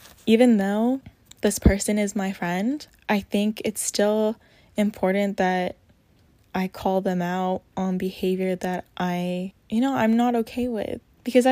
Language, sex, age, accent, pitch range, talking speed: English, female, 10-29, American, 185-220 Hz, 145 wpm